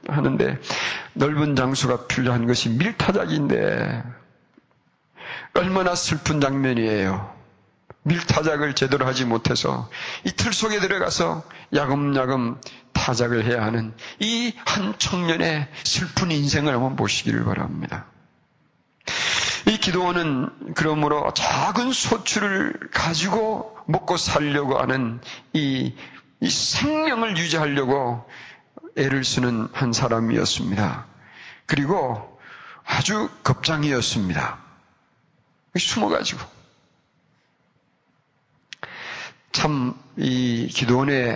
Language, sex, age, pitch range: Korean, male, 40-59, 120-155 Hz